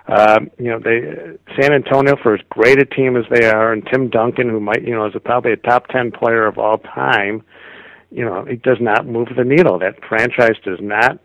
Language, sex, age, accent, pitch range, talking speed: English, male, 50-69, American, 95-115 Hz, 230 wpm